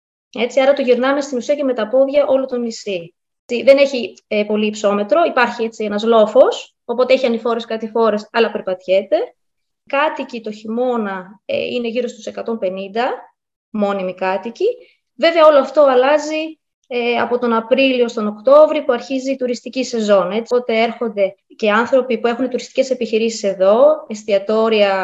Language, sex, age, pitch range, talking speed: Greek, female, 20-39, 215-270 Hz, 155 wpm